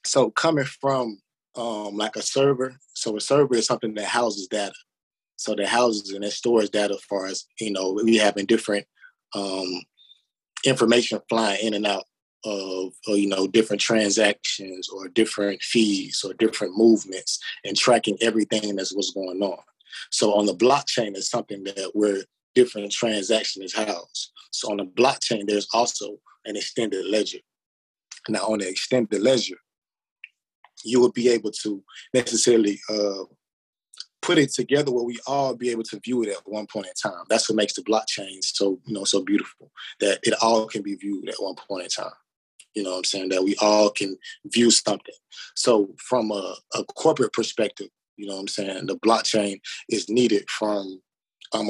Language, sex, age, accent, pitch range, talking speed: English, male, 20-39, American, 100-115 Hz, 175 wpm